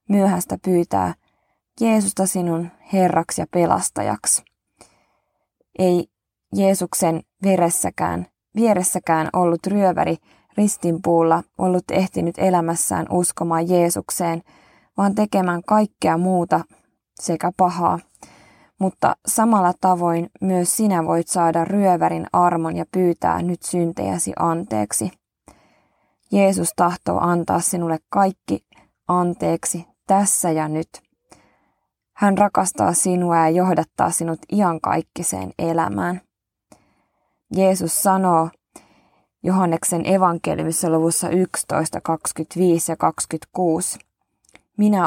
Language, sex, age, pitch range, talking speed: Finnish, female, 20-39, 165-185 Hz, 90 wpm